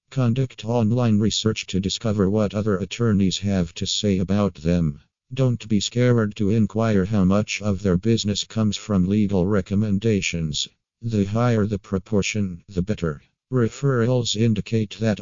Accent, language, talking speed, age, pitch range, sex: American, English, 140 wpm, 50-69, 95-110 Hz, male